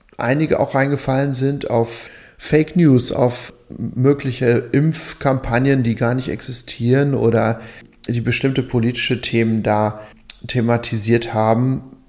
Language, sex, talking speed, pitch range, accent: German, male, 110 wpm, 115-135 Hz, German